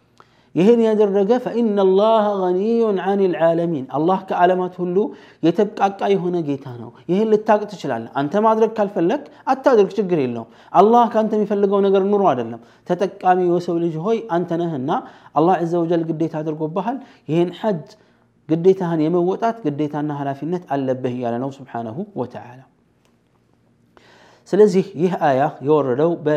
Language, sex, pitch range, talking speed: Amharic, male, 135-195 Hz, 135 wpm